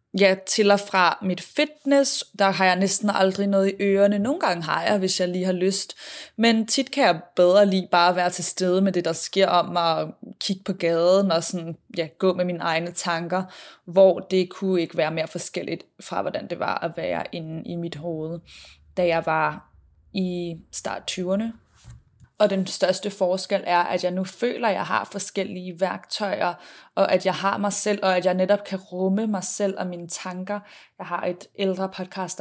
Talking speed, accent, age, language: 205 wpm, native, 20-39, Danish